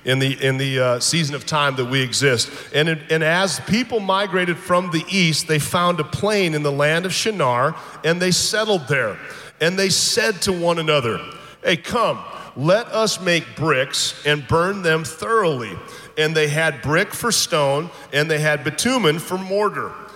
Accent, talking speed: American, 180 wpm